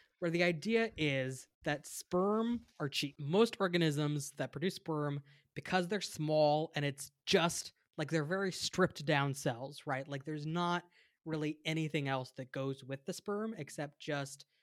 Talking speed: 160 wpm